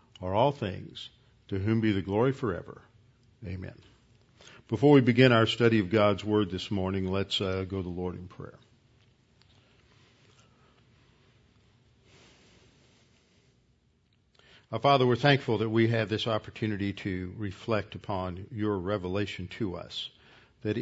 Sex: male